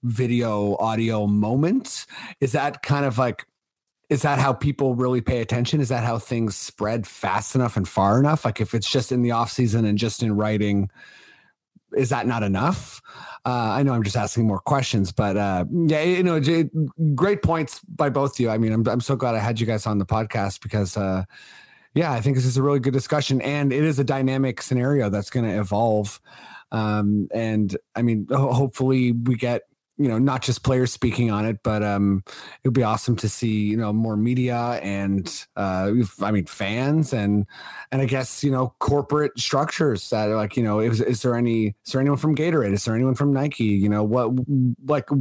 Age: 30-49